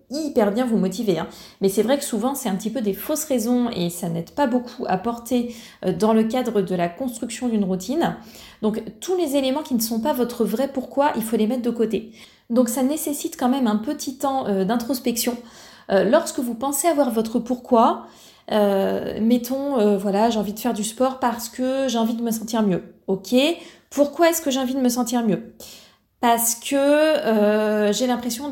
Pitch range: 210-260 Hz